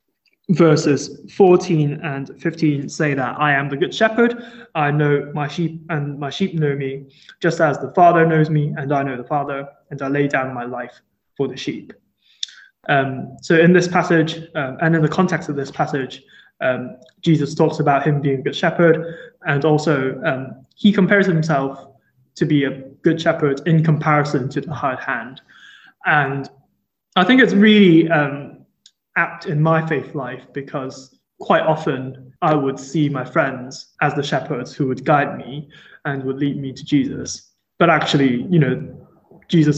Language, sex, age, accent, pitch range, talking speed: English, male, 20-39, British, 140-165 Hz, 175 wpm